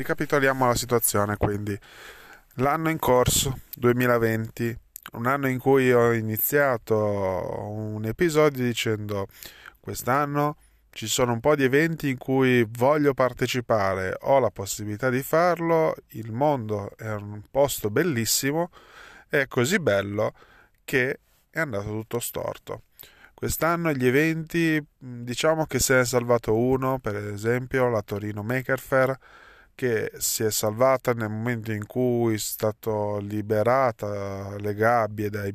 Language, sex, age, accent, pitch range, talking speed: Italian, male, 20-39, native, 105-135 Hz, 130 wpm